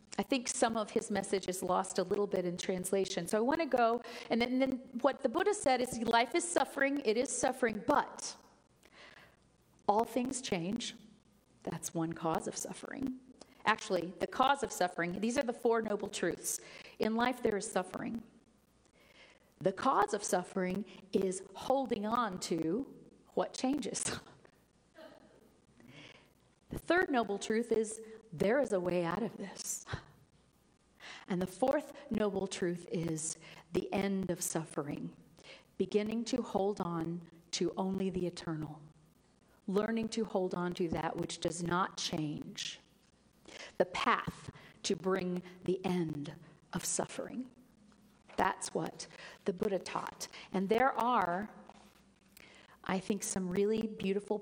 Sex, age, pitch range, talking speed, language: female, 40-59, 180-235 Hz, 140 wpm, English